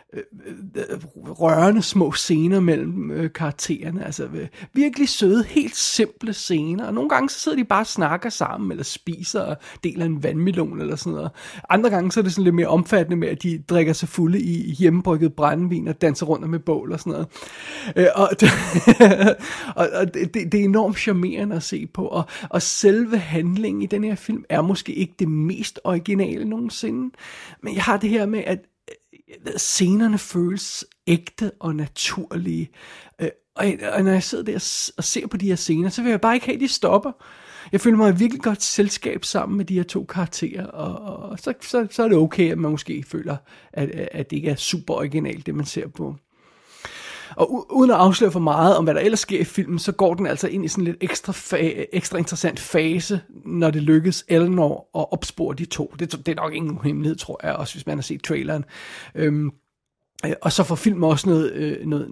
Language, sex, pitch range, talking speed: Danish, male, 160-205 Hz, 200 wpm